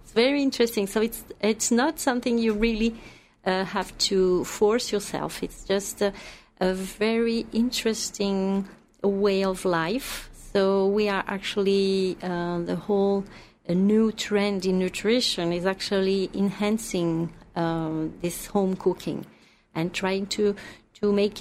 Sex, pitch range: female, 190-225 Hz